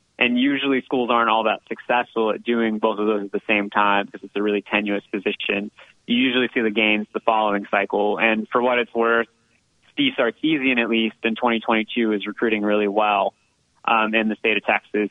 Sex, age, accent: male, 30-49, American